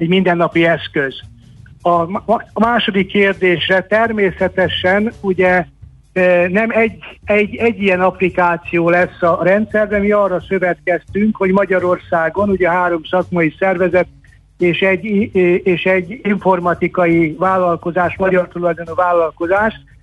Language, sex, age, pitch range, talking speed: Hungarian, male, 60-79, 170-195 Hz, 110 wpm